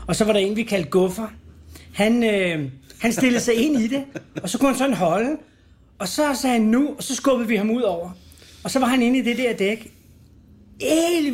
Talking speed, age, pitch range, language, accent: 235 wpm, 40-59, 170-230 Hz, Danish, native